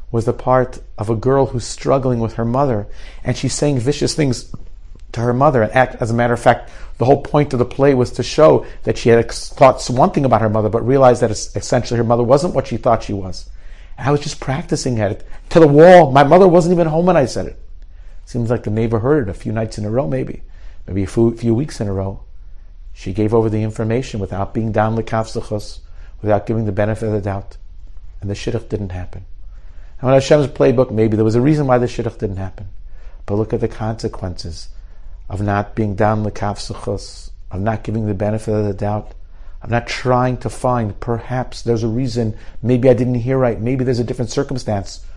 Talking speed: 225 wpm